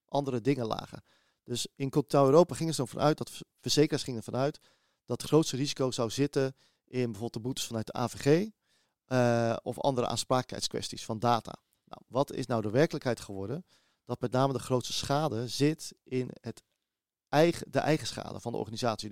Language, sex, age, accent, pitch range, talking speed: Dutch, male, 40-59, Dutch, 120-145 Hz, 180 wpm